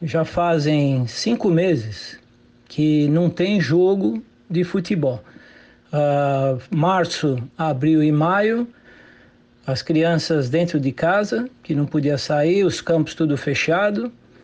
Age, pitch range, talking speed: 60-79, 135-170 Hz, 115 wpm